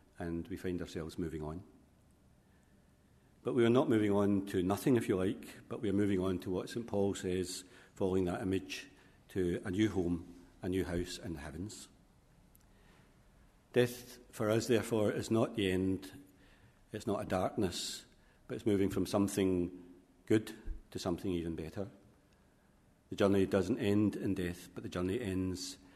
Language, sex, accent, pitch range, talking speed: English, male, British, 90-105 Hz, 165 wpm